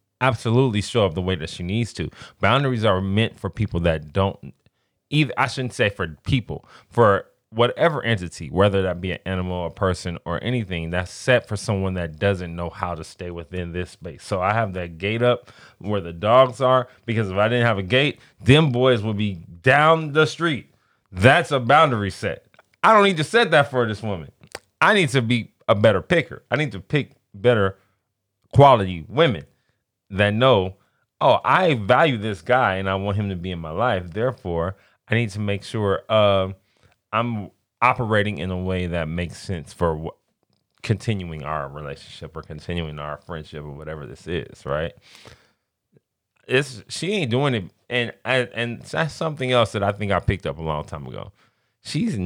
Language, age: English, 20-39